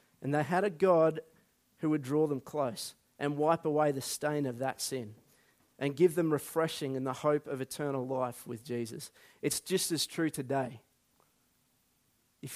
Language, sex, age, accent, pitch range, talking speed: English, male, 30-49, Australian, 140-180 Hz, 170 wpm